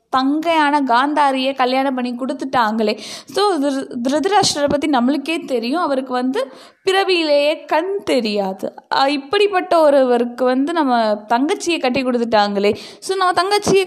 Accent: native